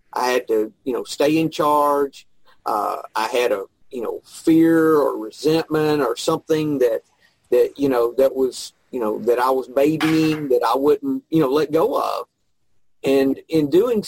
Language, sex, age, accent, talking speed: English, male, 40-59, American, 180 wpm